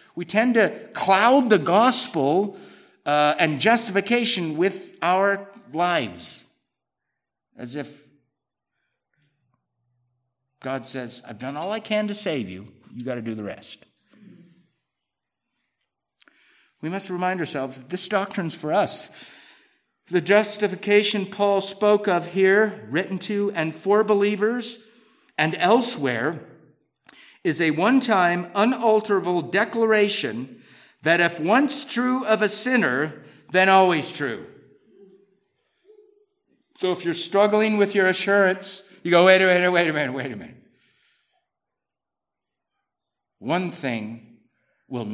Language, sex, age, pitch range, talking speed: English, male, 50-69, 150-210 Hz, 120 wpm